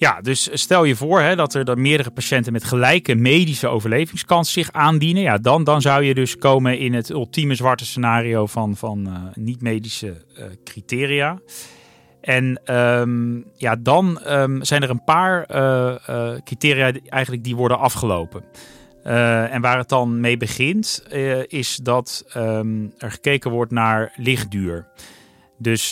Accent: Dutch